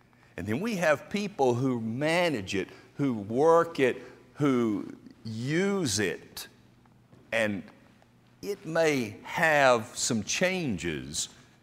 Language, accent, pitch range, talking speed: English, American, 105-145 Hz, 105 wpm